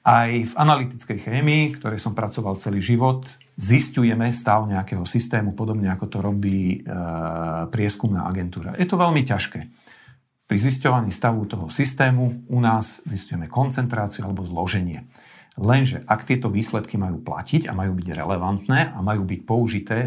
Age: 50-69